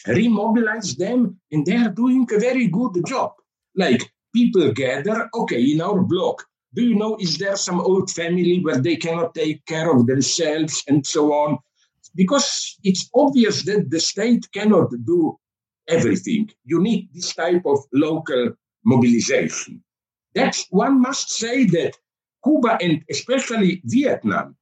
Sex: male